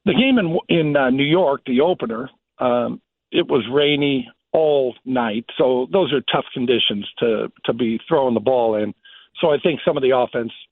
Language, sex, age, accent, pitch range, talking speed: English, male, 50-69, American, 120-155 Hz, 190 wpm